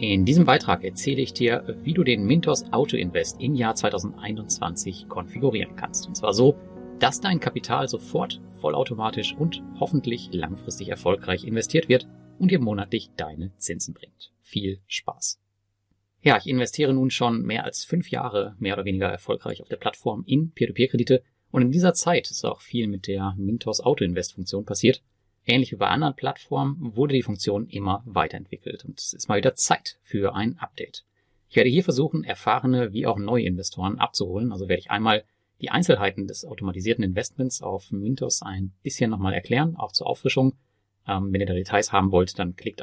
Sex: male